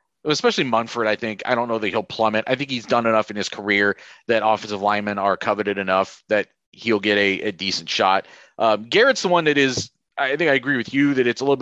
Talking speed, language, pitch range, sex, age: 245 wpm, English, 105-145 Hz, male, 30-49